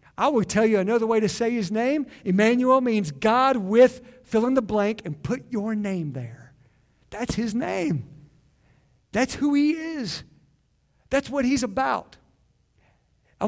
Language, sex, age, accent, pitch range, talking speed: English, male, 50-69, American, 185-245 Hz, 155 wpm